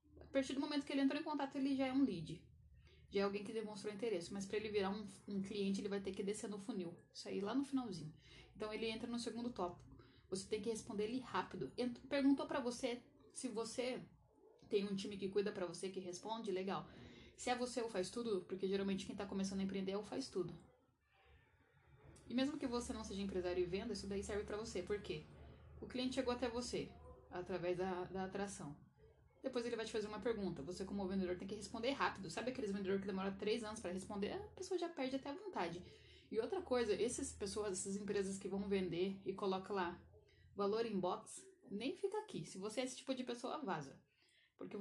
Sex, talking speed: female, 220 wpm